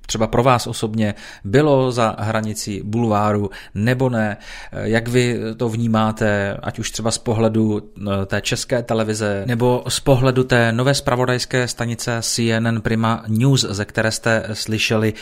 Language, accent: Czech, native